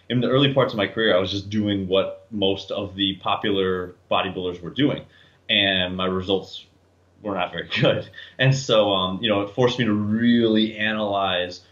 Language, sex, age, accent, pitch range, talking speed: English, male, 20-39, American, 95-110 Hz, 190 wpm